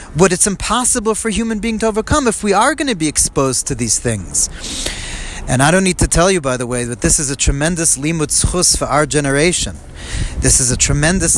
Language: English